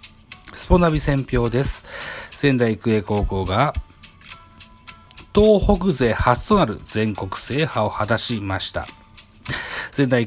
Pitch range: 100-140 Hz